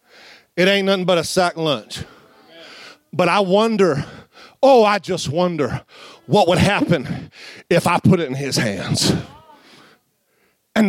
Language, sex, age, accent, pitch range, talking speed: English, male, 40-59, American, 140-200 Hz, 140 wpm